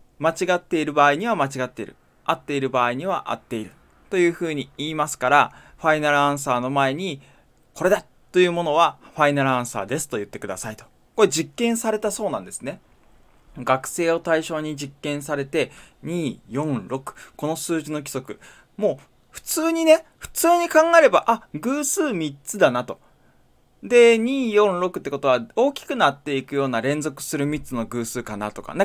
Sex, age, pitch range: male, 20-39, 130-190 Hz